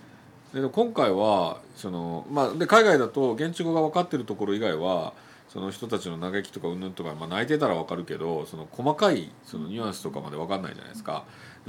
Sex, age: male, 40-59